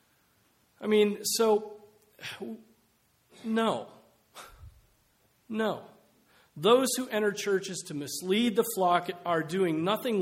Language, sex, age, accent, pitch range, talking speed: English, male, 40-59, American, 170-220 Hz, 95 wpm